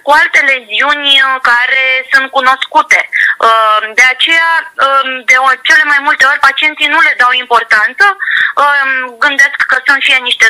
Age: 20-39